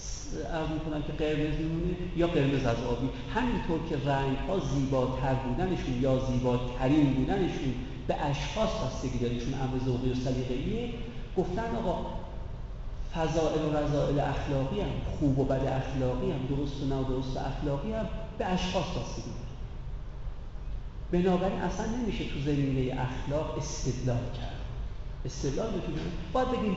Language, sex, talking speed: Persian, male, 135 wpm